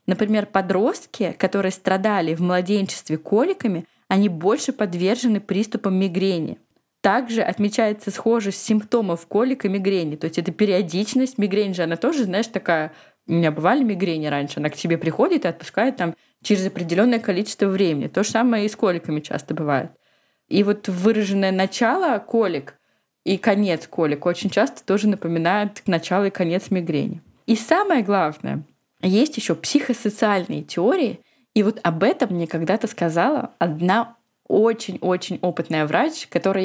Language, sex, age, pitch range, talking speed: Russian, female, 20-39, 175-220 Hz, 140 wpm